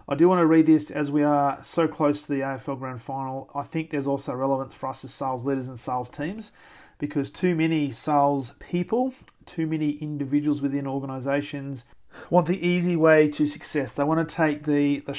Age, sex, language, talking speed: 40-59, male, English, 200 wpm